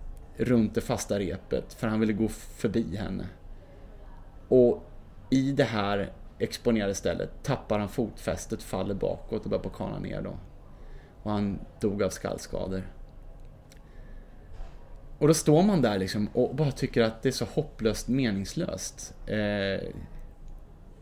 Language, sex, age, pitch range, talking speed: Swedish, male, 20-39, 105-150 Hz, 135 wpm